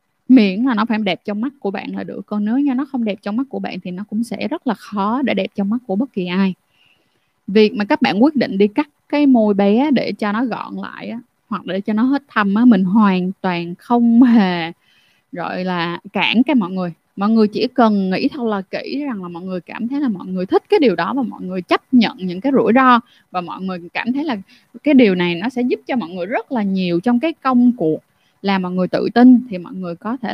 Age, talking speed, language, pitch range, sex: 20-39, 260 wpm, Vietnamese, 190-255 Hz, female